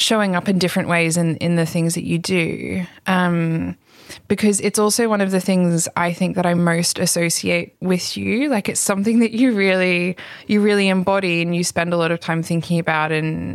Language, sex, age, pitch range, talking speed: English, female, 20-39, 170-190 Hz, 210 wpm